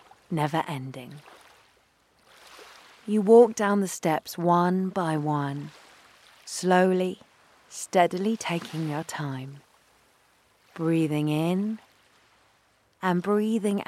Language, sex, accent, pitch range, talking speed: English, female, British, 155-195 Hz, 80 wpm